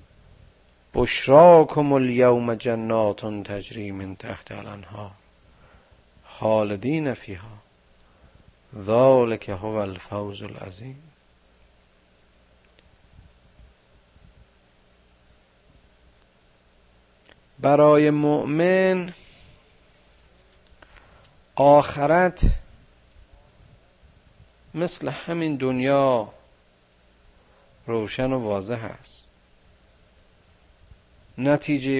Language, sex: Persian, male